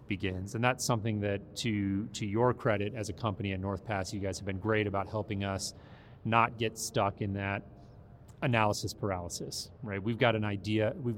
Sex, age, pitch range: male, 30-49, 100-115 Hz